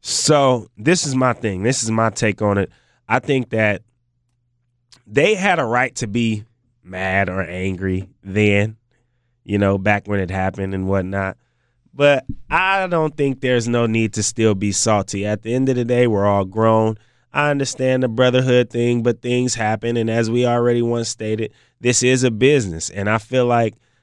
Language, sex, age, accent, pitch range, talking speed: English, male, 20-39, American, 115-135 Hz, 185 wpm